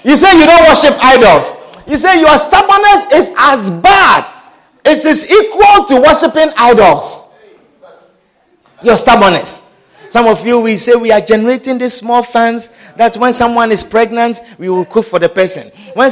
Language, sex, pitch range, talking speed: English, male, 235-325 Hz, 165 wpm